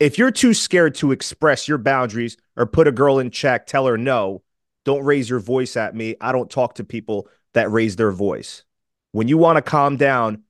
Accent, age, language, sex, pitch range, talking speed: American, 30-49, English, male, 125-170 Hz, 215 wpm